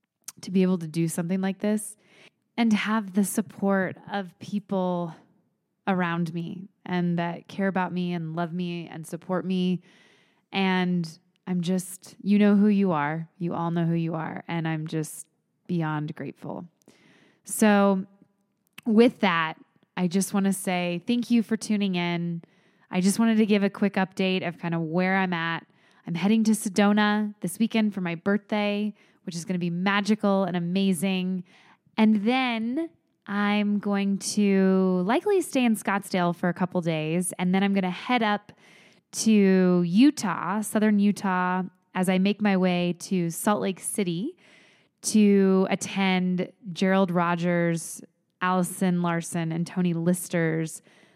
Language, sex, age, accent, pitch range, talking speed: English, female, 20-39, American, 175-205 Hz, 155 wpm